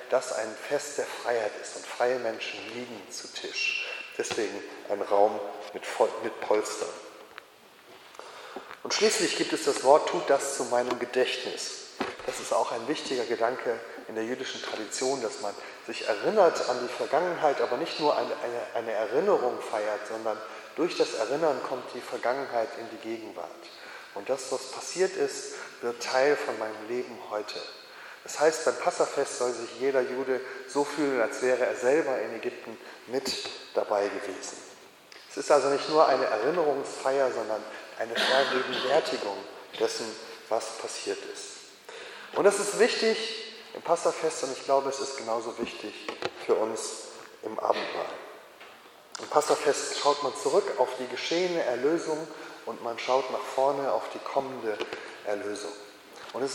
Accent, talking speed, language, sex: German, 155 wpm, German, male